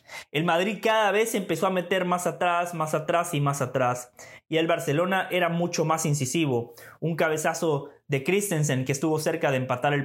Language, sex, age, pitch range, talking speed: English, male, 20-39, 140-185 Hz, 185 wpm